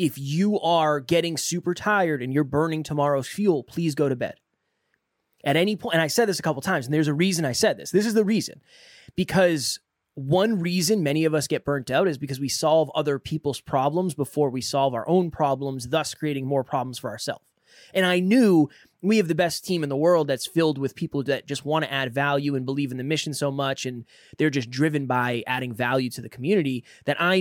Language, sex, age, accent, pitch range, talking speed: English, male, 20-39, American, 140-185 Hz, 230 wpm